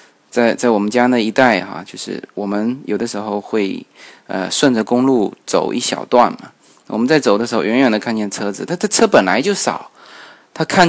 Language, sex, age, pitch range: Chinese, male, 20-39, 110-150 Hz